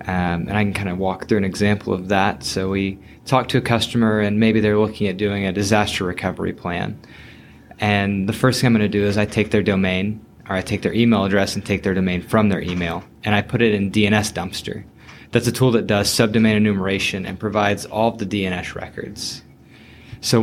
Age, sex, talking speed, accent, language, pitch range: 20-39, male, 225 wpm, American, English, 100-115 Hz